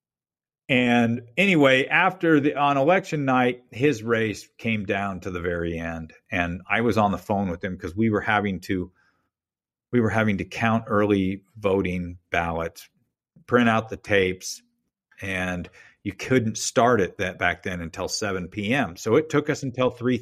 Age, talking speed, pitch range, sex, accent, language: 50-69, 170 wpm, 100-130 Hz, male, American, English